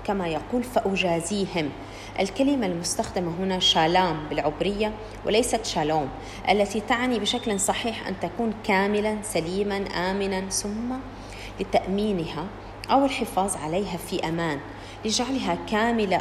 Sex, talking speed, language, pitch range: female, 105 wpm, English, 160-215 Hz